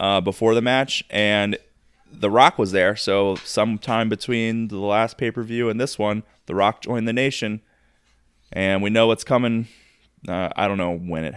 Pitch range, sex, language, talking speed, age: 90-115 Hz, male, English, 180 wpm, 20-39